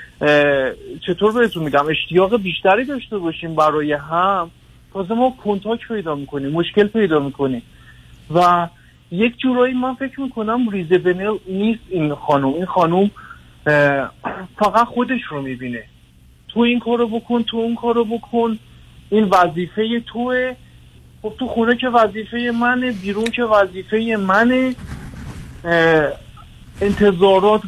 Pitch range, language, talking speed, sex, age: 155-225 Hz, Persian, 120 wpm, male, 50-69